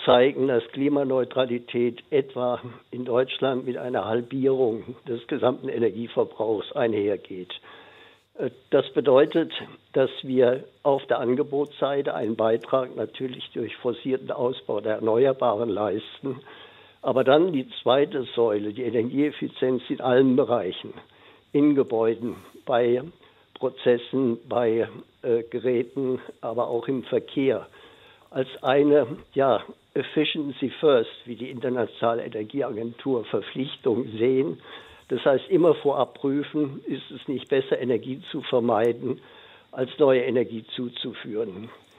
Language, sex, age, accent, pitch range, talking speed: German, male, 60-79, German, 120-140 Hz, 110 wpm